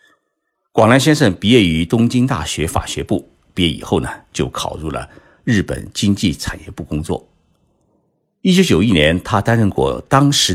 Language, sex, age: Chinese, male, 50-69